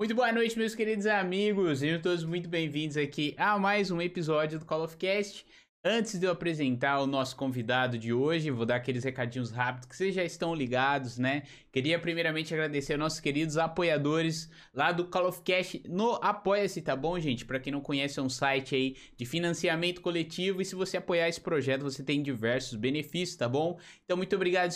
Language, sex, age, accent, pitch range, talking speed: Portuguese, male, 20-39, Brazilian, 140-180 Hz, 200 wpm